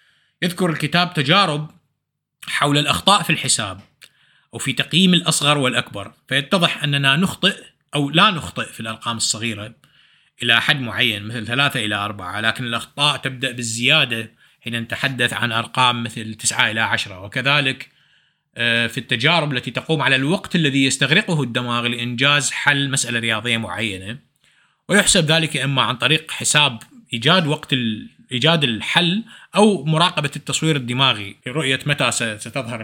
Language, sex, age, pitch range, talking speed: Arabic, male, 30-49, 115-160 Hz, 130 wpm